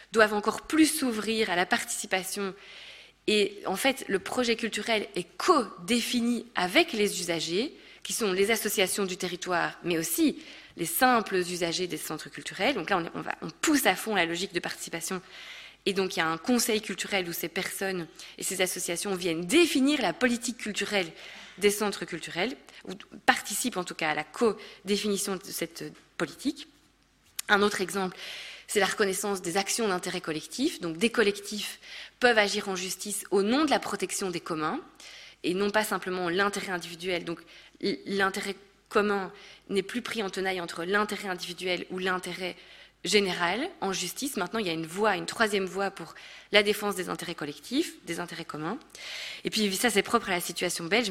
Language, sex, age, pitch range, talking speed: French, female, 20-39, 180-225 Hz, 175 wpm